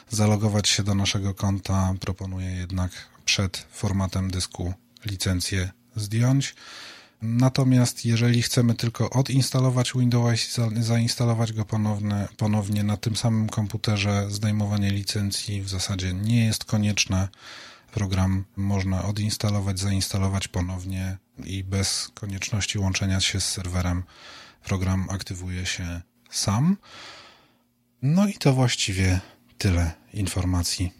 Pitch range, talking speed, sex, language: 95-115 Hz, 110 wpm, male, Polish